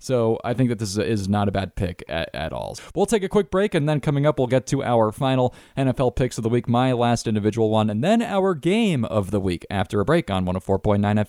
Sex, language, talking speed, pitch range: male, English, 250 wpm, 105-145 Hz